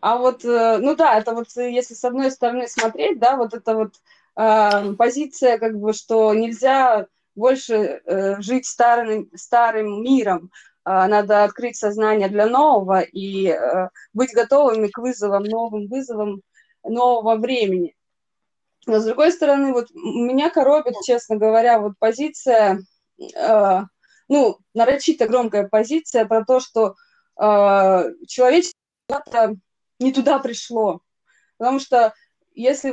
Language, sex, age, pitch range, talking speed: Russian, female, 20-39, 220-280 Hz, 130 wpm